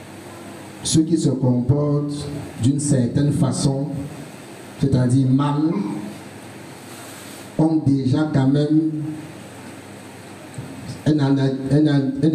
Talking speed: 70 wpm